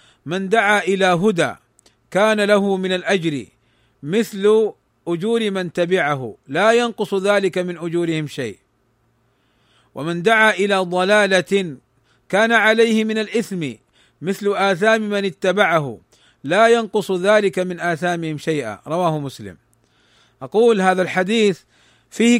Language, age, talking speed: Arabic, 40-59, 115 wpm